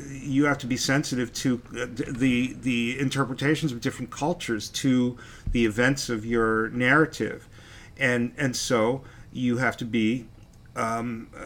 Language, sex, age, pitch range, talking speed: English, male, 40-59, 115-140 Hz, 135 wpm